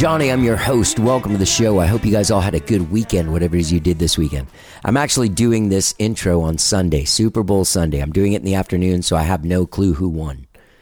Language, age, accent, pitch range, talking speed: English, 40-59, American, 85-105 Hz, 260 wpm